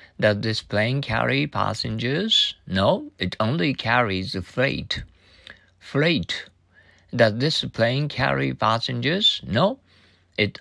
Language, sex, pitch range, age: Japanese, male, 95-135 Hz, 50-69